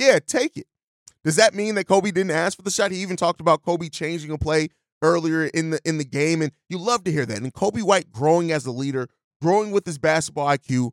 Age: 30-49